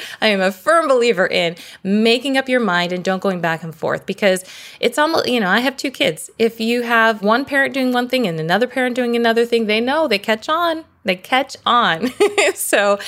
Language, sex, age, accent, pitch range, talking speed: English, female, 20-39, American, 180-265 Hz, 220 wpm